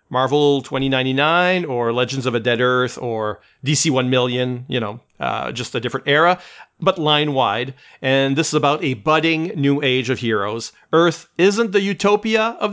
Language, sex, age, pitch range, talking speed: English, male, 40-59, 125-160 Hz, 170 wpm